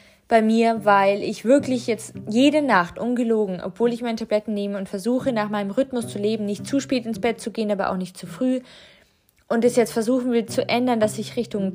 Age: 20-39